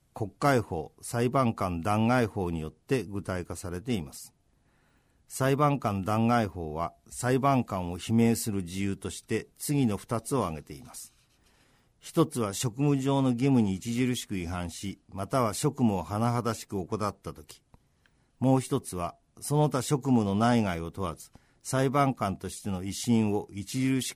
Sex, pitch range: male, 95-125 Hz